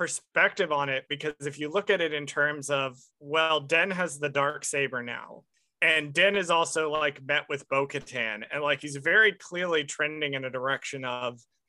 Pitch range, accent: 140-185 Hz, American